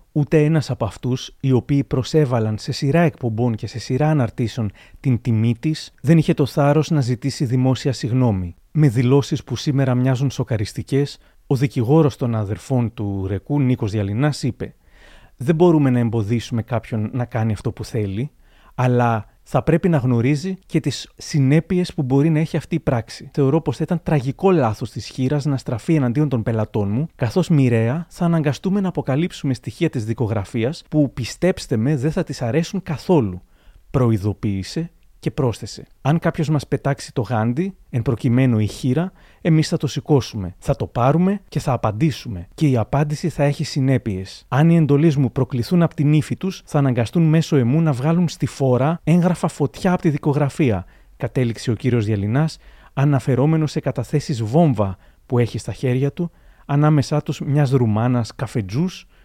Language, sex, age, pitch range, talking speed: Greek, male, 30-49, 120-155 Hz, 165 wpm